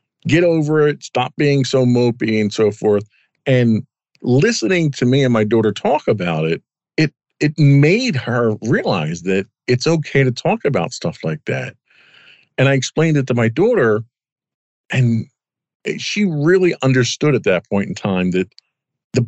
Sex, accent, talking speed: male, American, 160 wpm